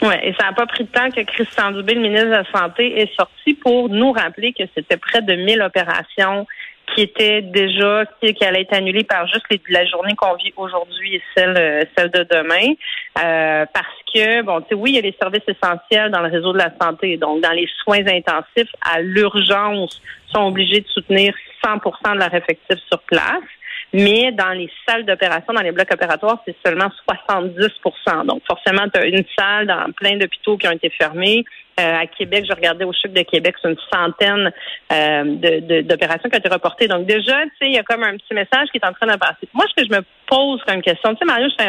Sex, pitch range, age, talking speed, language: female, 180-225 Hz, 40-59, 225 wpm, French